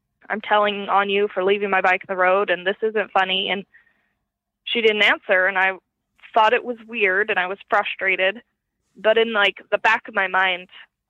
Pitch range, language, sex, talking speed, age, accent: 185-215 Hz, English, female, 200 wpm, 20-39, American